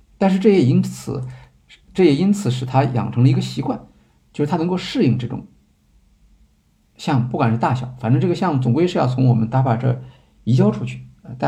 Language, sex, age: Chinese, male, 50-69